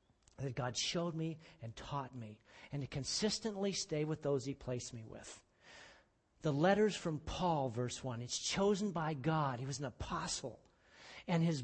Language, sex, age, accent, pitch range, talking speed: English, male, 50-69, American, 150-215 Hz, 170 wpm